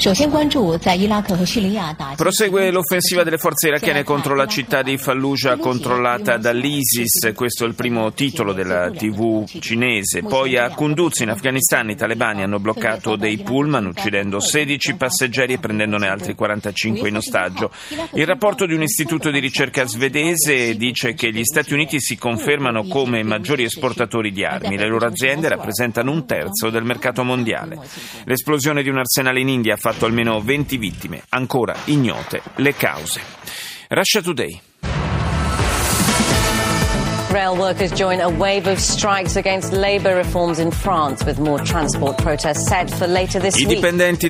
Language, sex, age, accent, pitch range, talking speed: Italian, male, 30-49, native, 115-155 Hz, 120 wpm